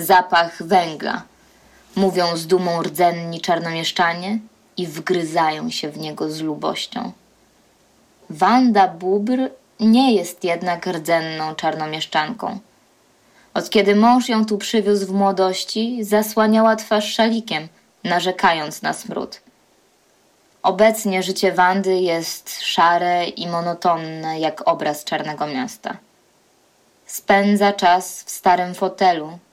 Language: Polish